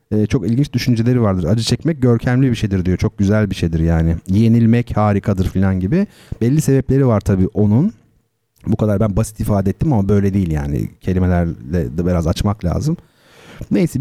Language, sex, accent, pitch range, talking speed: Turkish, male, native, 105-135 Hz, 170 wpm